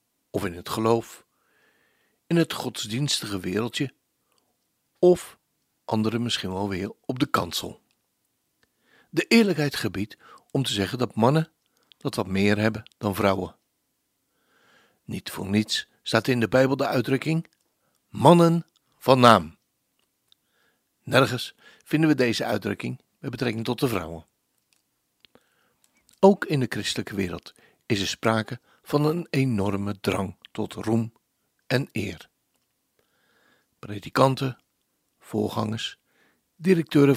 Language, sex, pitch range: Dutch, male, 100-135 Hz